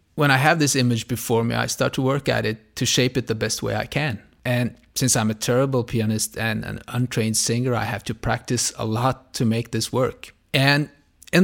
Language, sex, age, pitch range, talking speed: English, male, 30-49, 110-130 Hz, 225 wpm